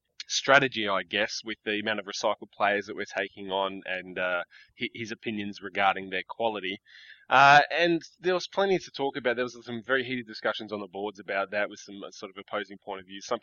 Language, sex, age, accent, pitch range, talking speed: English, male, 20-39, Australian, 100-125 Hz, 215 wpm